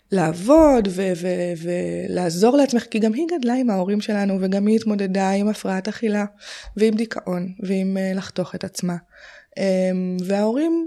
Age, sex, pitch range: 20-39, female, 180-215 Hz